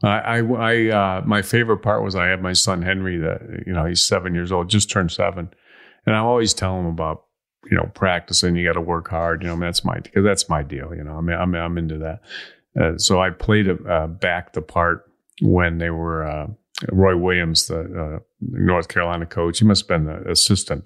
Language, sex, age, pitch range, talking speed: English, male, 40-59, 80-95 Hz, 225 wpm